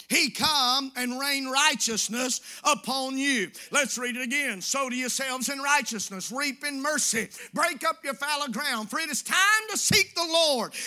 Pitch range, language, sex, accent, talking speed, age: 255-305 Hz, English, male, American, 175 wpm, 50-69